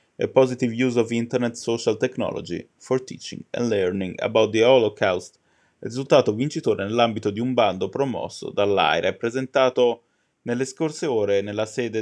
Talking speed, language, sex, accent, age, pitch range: 150 wpm, Italian, male, native, 20-39, 105-135 Hz